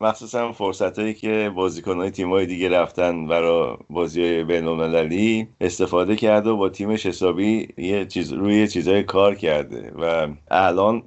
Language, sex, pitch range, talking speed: Persian, male, 85-115 Hz, 125 wpm